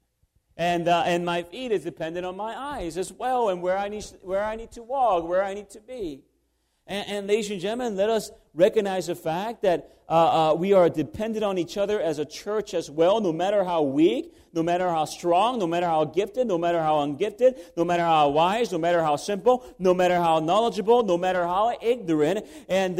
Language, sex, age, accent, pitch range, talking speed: English, male, 40-59, American, 145-200 Hz, 220 wpm